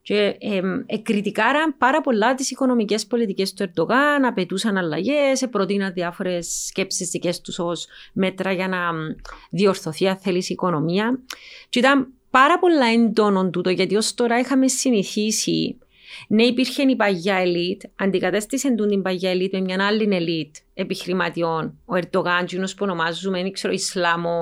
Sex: female